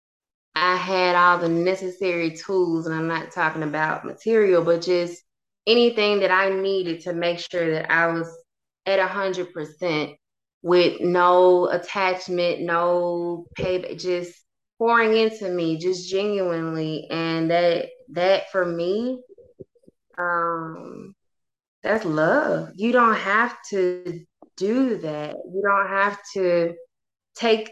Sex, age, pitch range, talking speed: female, 20-39, 170-200 Hz, 120 wpm